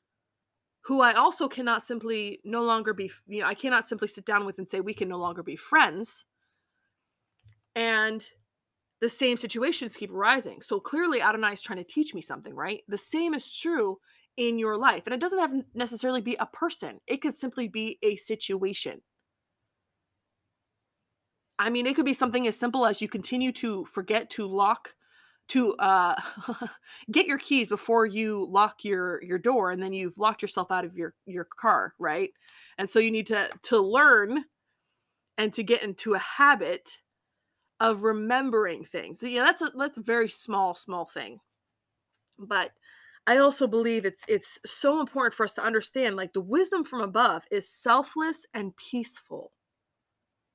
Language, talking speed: English, 170 wpm